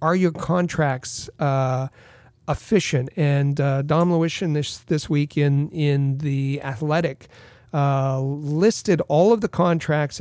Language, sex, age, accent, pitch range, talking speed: English, male, 40-59, American, 135-155 Hz, 130 wpm